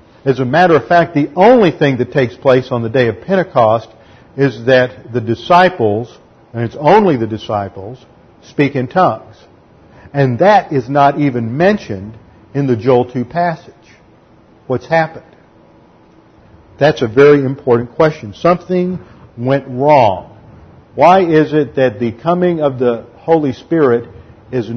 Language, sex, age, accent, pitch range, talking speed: English, male, 50-69, American, 115-155 Hz, 145 wpm